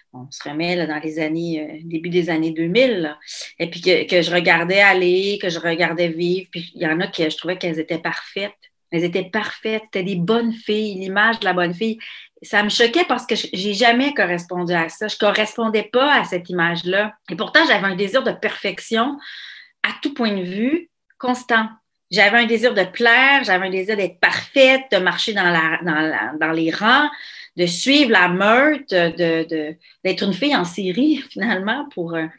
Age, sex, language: 30-49, female, French